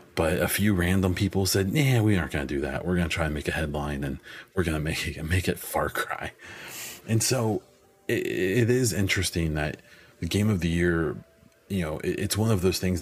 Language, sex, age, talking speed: English, male, 30-49, 235 wpm